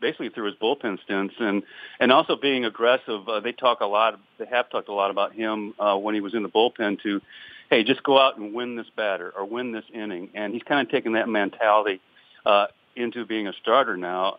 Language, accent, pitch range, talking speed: English, American, 100-120 Hz, 235 wpm